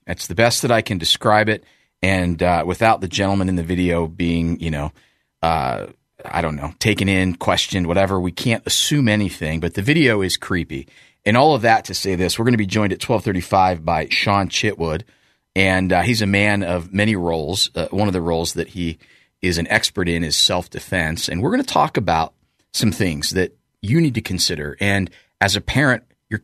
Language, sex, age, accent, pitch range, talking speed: English, male, 30-49, American, 85-115 Hz, 210 wpm